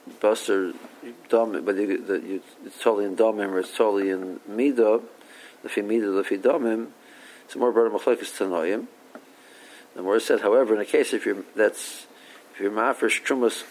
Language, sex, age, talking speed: English, male, 50-69, 175 wpm